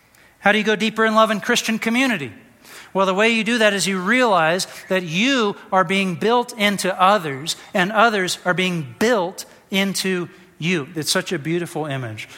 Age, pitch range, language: 40-59, 175-225 Hz, English